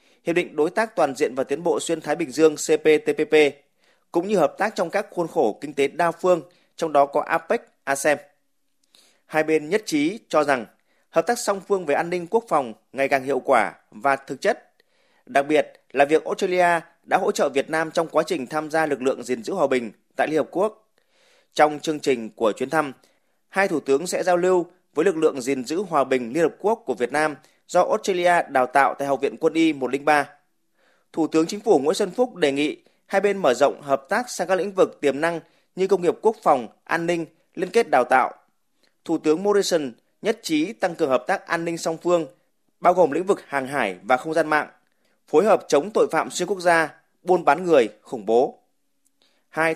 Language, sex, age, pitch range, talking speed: Vietnamese, male, 20-39, 145-190 Hz, 220 wpm